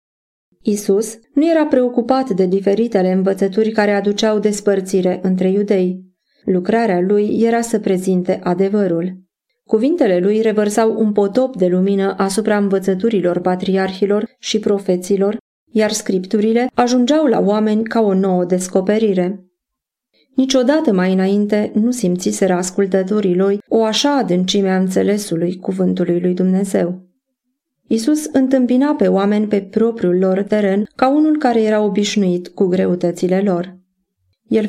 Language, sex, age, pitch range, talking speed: Romanian, female, 30-49, 185-225 Hz, 125 wpm